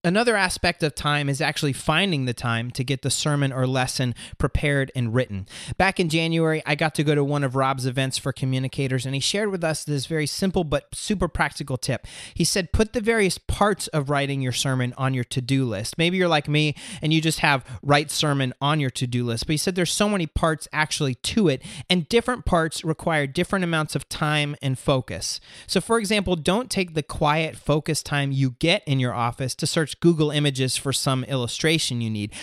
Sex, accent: male, American